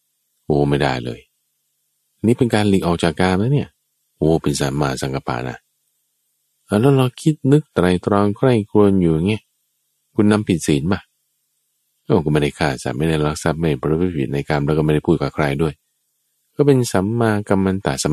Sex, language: male, Thai